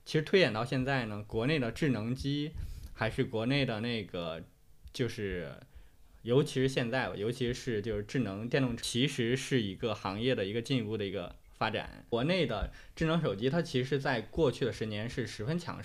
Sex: male